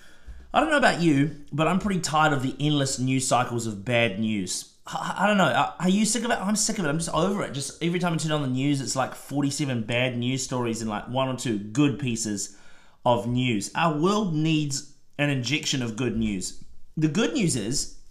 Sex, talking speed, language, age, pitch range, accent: male, 225 wpm, English, 30-49, 120-165 Hz, Australian